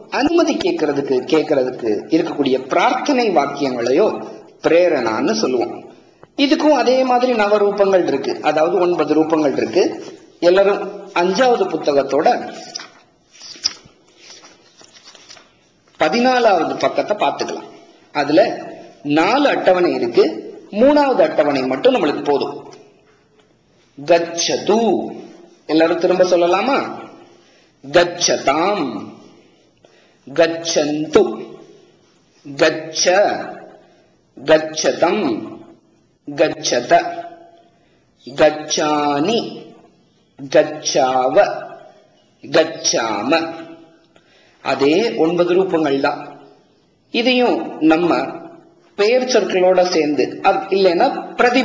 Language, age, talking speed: Tamil, 40-59, 55 wpm